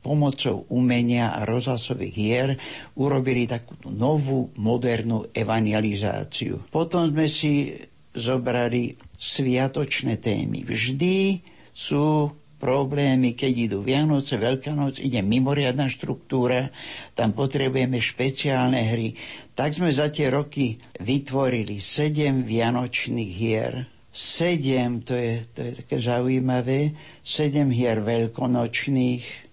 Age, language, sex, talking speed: 60-79, Slovak, male, 100 wpm